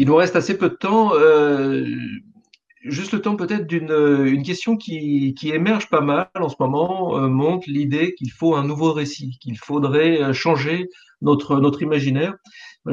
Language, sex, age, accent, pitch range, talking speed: French, male, 50-69, French, 130-170 Hz, 175 wpm